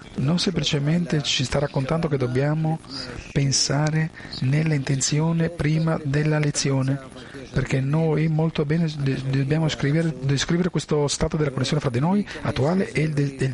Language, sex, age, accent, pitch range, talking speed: Italian, male, 40-59, native, 140-165 Hz, 140 wpm